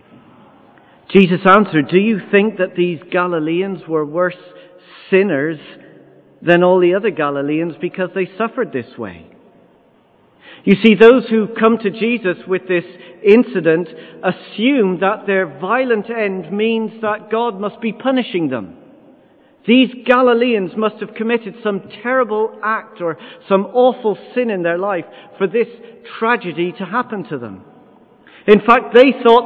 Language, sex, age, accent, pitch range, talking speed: English, male, 50-69, British, 180-230 Hz, 140 wpm